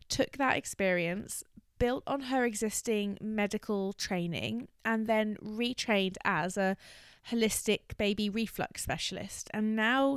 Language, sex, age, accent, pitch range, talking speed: English, female, 20-39, British, 185-225 Hz, 120 wpm